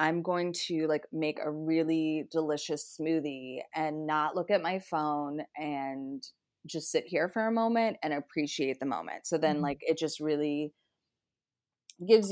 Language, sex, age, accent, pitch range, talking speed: English, female, 20-39, American, 145-185 Hz, 160 wpm